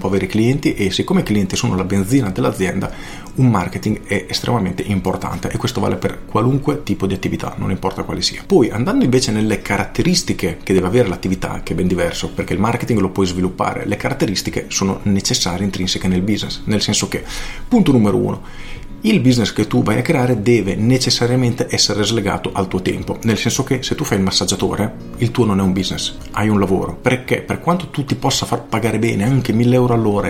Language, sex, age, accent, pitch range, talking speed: Italian, male, 40-59, native, 95-120 Hz, 205 wpm